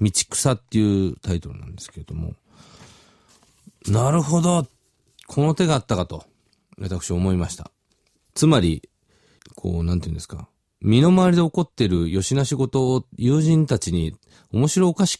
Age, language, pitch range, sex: 40-59, Japanese, 95-145 Hz, male